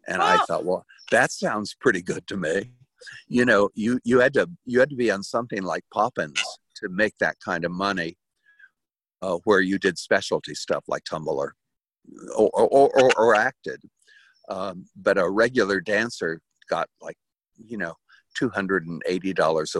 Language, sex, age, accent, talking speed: English, male, 50-69, American, 165 wpm